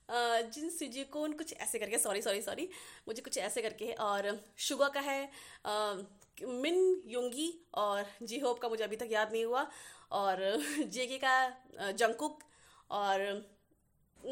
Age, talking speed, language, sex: 20-39, 150 wpm, Hindi, female